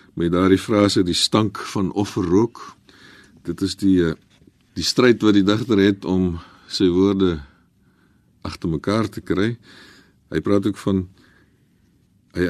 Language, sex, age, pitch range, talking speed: Dutch, male, 50-69, 90-110 Hz, 140 wpm